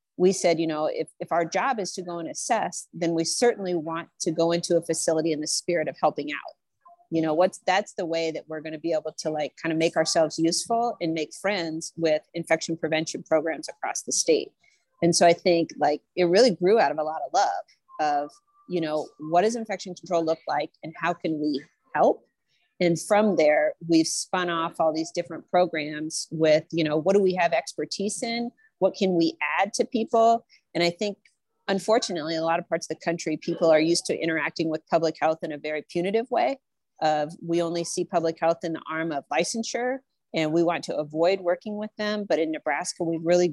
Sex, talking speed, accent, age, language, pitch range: female, 220 wpm, American, 40-59, English, 160-195 Hz